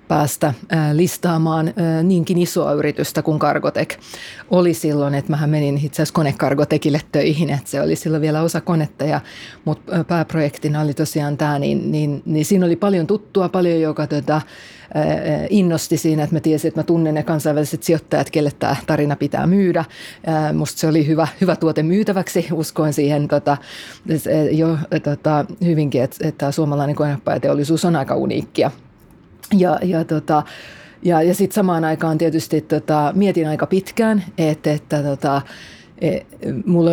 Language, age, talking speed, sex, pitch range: Finnish, 30-49, 160 wpm, female, 150-170 Hz